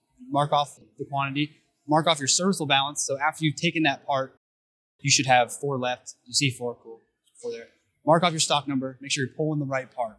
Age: 20-39